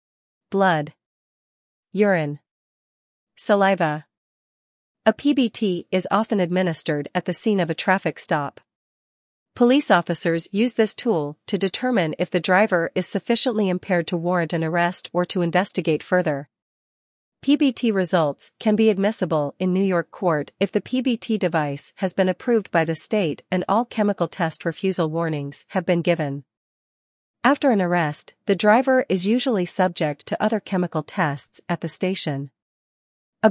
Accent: American